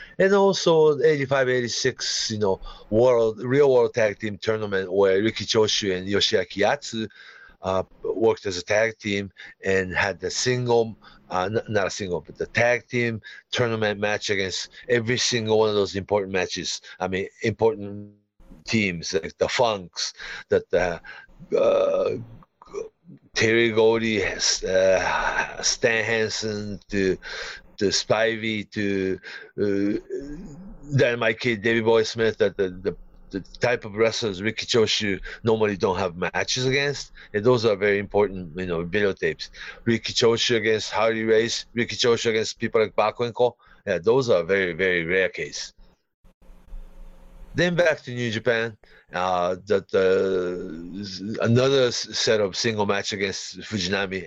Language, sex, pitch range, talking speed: English, male, 100-120 Hz, 140 wpm